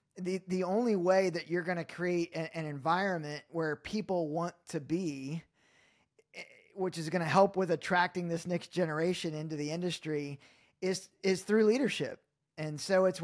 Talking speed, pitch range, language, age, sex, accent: 165 wpm, 160-185 Hz, English, 20-39, male, American